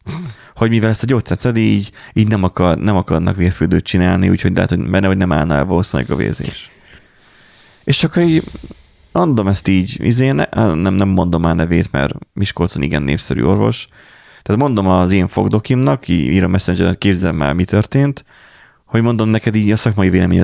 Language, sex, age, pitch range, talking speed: Hungarian, male, 30-49, 90-120 Hz, 175 wpm